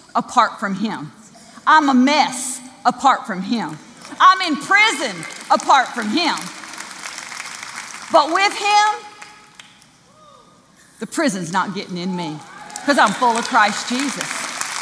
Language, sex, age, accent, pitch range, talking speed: English, female, 40-59, American, 270-370 Hz, 120 wpm